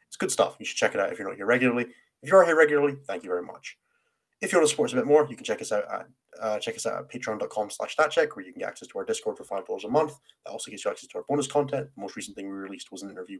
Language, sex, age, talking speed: English, male, 20-39, 335 wpm